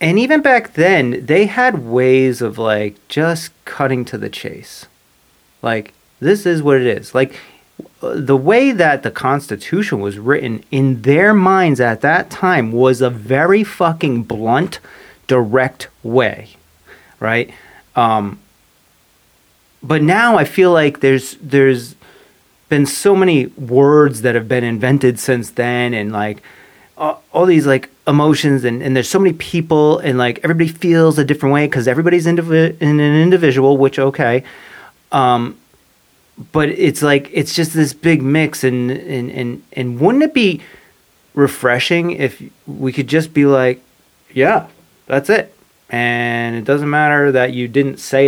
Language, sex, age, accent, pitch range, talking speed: English, male, 30-49, American, 125-165 Hz, 150 wpm